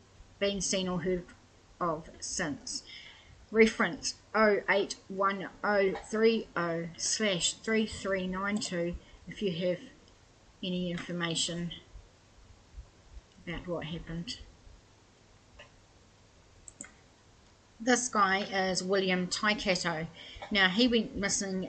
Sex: female